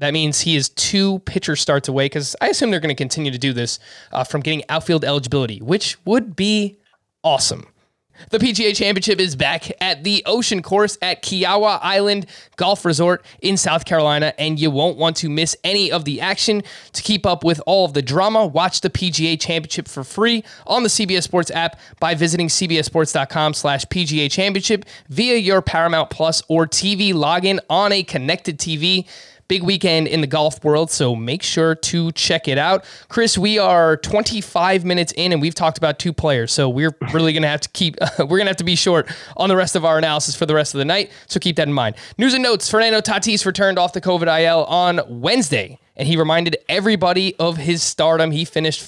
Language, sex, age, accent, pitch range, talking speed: English, male, 20-39, American, 155-190 Hz, 205 wpm